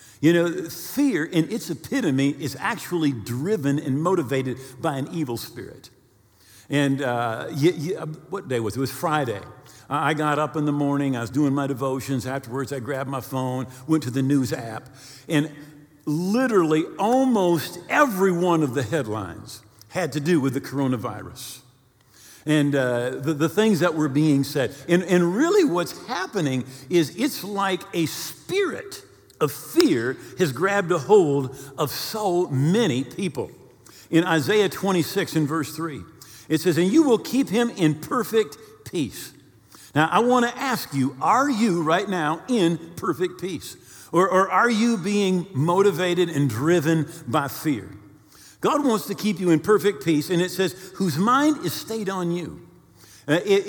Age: 50-69